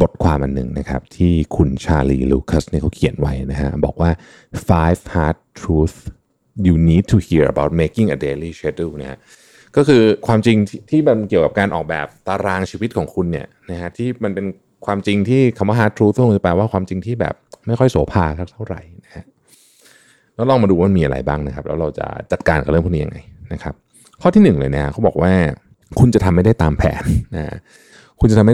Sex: male